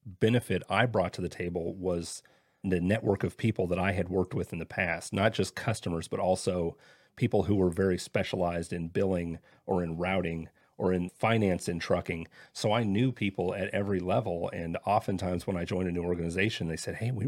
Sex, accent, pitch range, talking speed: male, American, 90-110 Hz, 200 wpm